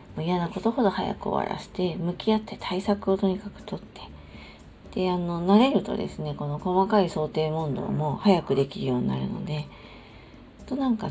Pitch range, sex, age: 145-205 Hz, female, 40-59